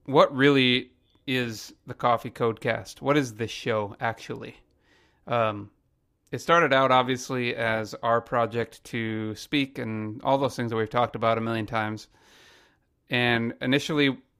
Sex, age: male, 30-49